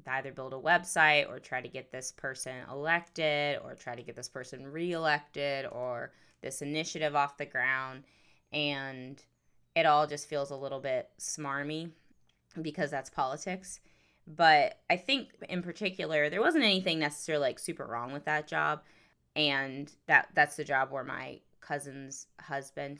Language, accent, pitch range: English, American, 135-165 Hz